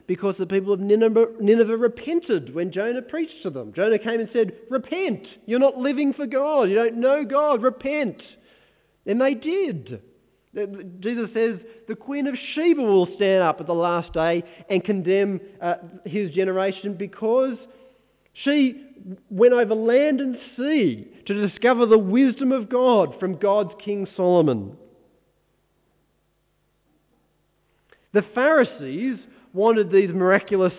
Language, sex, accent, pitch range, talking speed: English, male, Australian, 180-245 Hz, 135 wpm